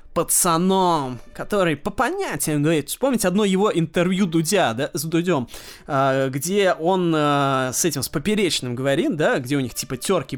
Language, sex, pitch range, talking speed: Russian, male, 165-210 Hz, 150 wpm